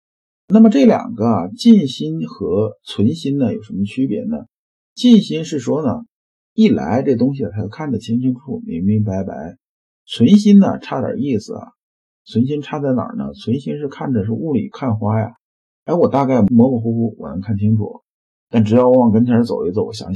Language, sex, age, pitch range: Chinese, male, 50-69, 105-155 Hz